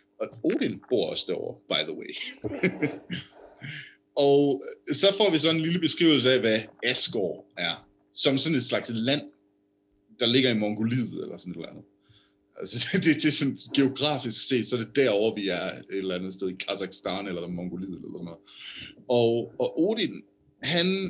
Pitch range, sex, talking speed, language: 100-130 Hz, male, 175 wpm, Danish